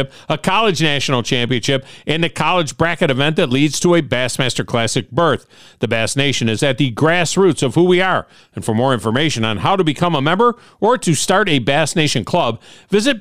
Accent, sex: American, male